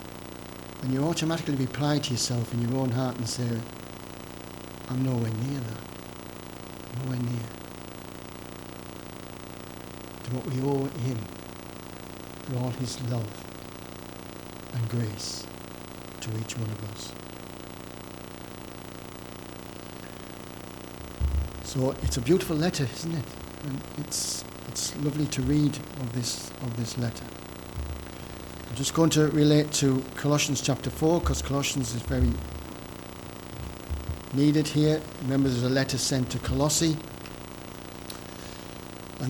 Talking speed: 115 wpm